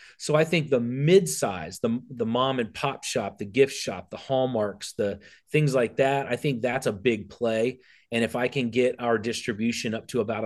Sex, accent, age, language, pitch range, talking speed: male, American, 30-49, English, 110-135 Hz, 205 wpm